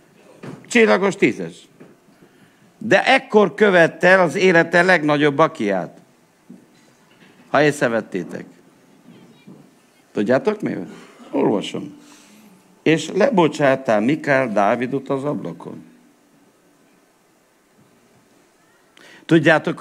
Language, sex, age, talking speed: Hungarian, male, 60-79, 65 wpm